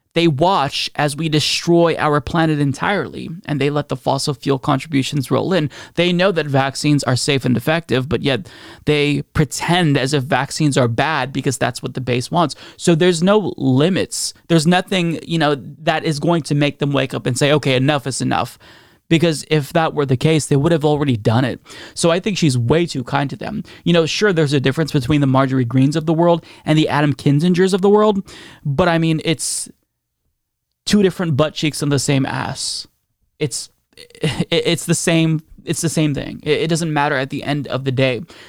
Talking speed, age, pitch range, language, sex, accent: 205 wpm, 20-39, 135-165 Hz, English, male, American